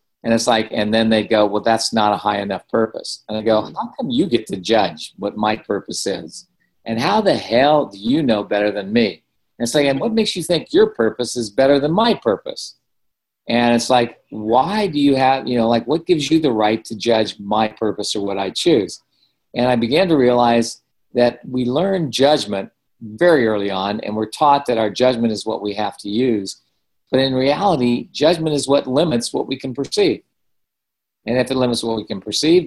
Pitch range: 110-135 Hz